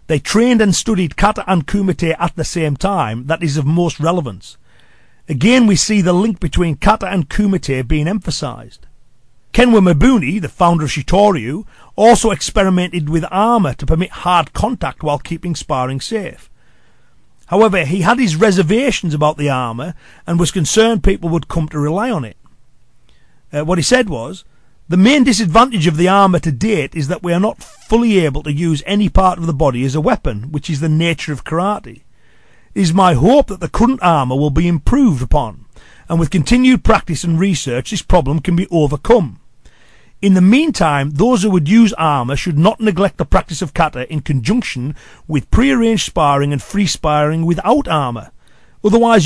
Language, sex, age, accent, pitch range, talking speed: English, male, 40-59, British, 150-210 Hz, 180 wpm